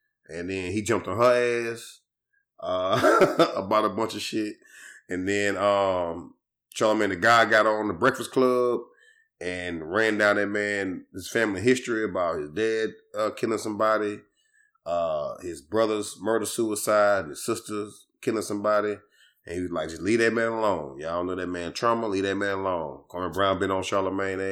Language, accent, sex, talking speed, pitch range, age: English, American, male, 170 wpm, 95-115 Hz, 30-49